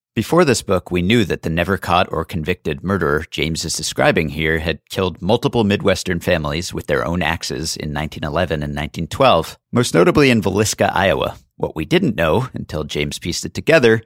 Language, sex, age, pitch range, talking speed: English, male, 50-69, 85-115 Hz, 185 wpm